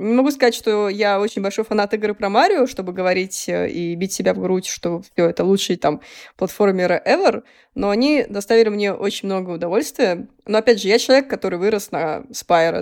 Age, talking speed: 20-39, 185 wpm